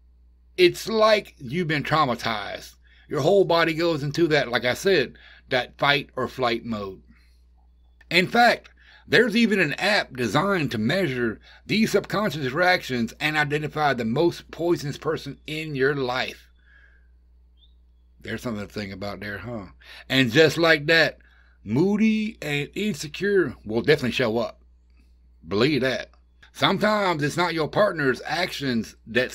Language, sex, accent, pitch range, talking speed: English, male, American, 100-150 Hz, 135 wpm